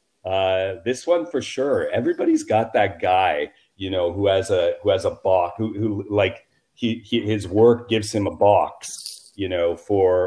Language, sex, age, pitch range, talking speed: English, male, 40-59, 90-115 Hz, 185 wpm